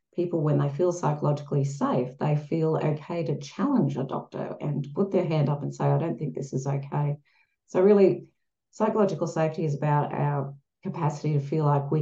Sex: female